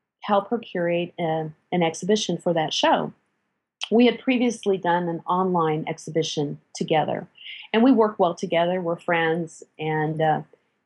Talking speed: 145 wpm